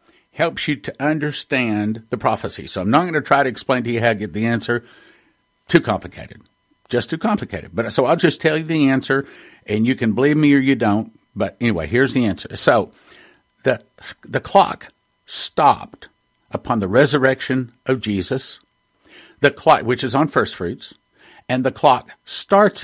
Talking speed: 180 wpm